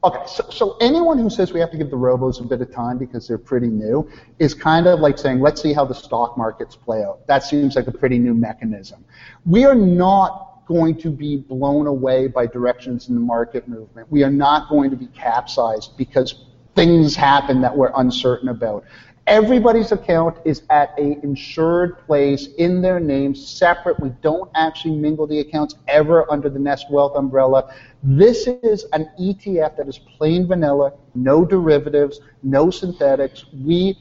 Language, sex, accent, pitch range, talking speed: English, male, American, 130-165 Hz, 185 wpm